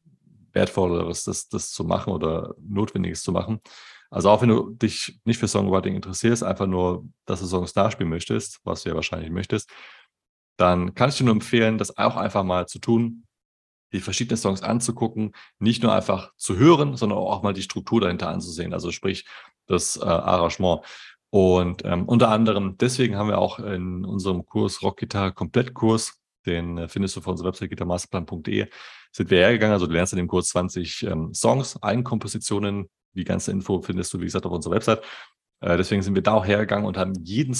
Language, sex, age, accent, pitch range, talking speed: German, male, 30-49, German, 95-110 Hz, 185 wpm